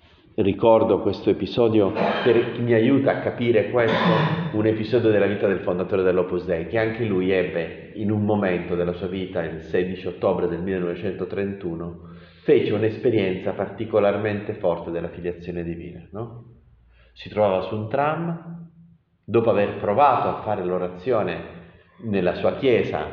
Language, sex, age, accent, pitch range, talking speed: Italian, male, 40-59, native, 90-115 Hz, 140 wpm